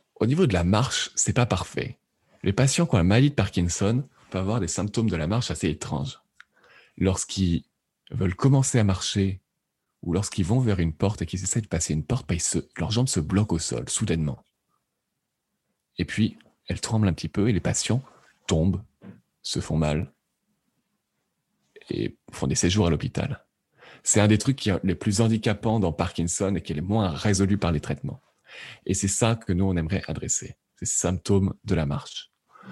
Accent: French